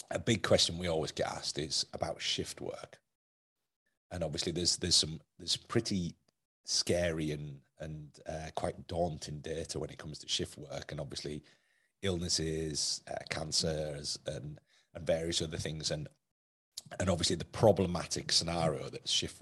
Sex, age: male, 40-59